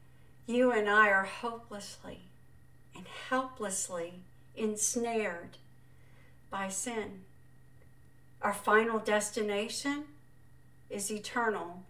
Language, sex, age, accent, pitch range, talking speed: English, female, 50-69, American, 210-275 Hz, 75 wpm